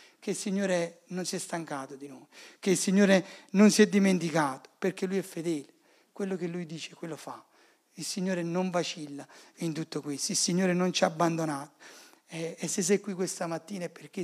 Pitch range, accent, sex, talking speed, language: 160-195 Hz, native, male, 200 wpm, Italian